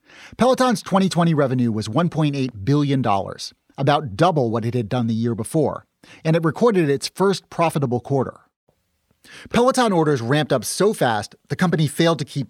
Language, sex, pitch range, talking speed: English, male, 125-170 Hz, 160 wpm